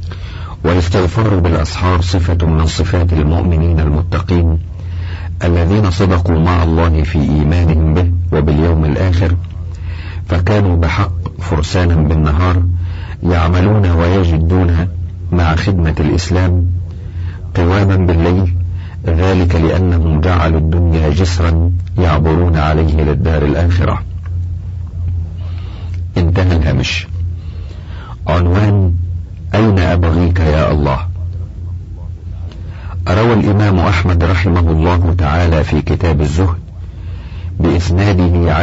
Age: 50-69